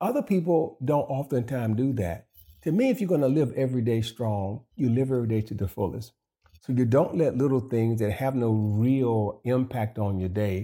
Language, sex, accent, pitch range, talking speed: English, male, American, 95-115 Hz, 210 wpm